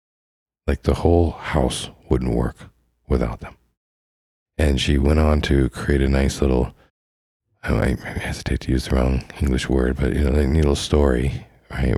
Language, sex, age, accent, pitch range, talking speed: English, male, 50-69, American, 65-85 Hz, 170 wpm